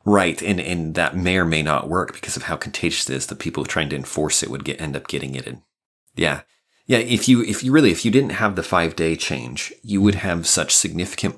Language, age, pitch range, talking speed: English, 30-49, 70-95 Hz, 250 wpm